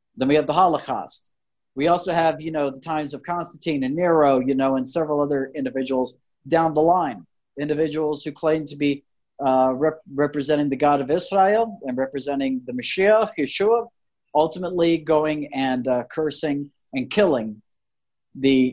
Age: 50-69